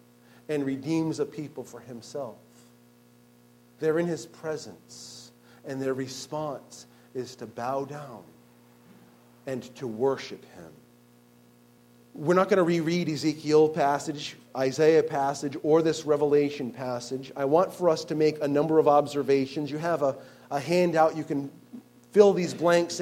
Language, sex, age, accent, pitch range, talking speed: English, male, 40-59, American, 120-175 Hz, 140 wpm